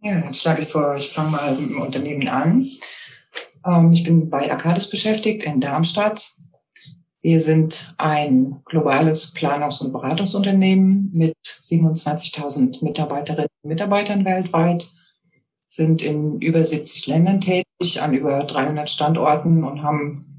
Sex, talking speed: female, 130 wpm